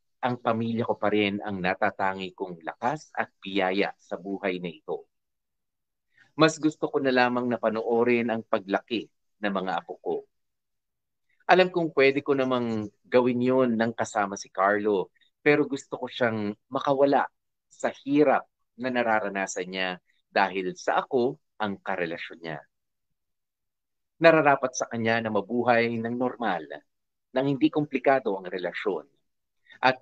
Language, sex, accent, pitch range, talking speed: English, male, Filipino, 100-130 Hz, 130 wpm